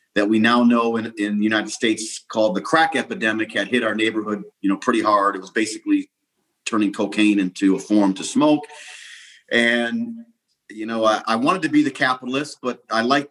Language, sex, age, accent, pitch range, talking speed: English, male, 40-59, American, 120-170 Hz, 200 wpm